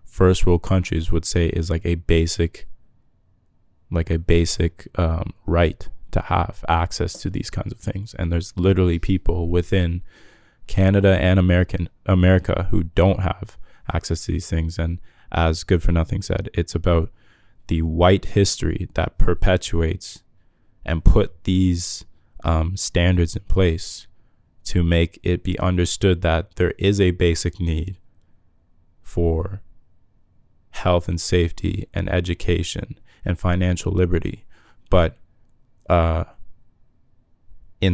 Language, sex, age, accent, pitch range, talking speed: English, male, 20-39, American, 85-100 Hz, 130 wpm